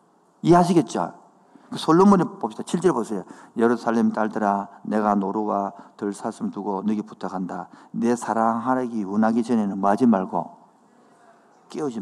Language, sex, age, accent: Korean, male, 50-69, native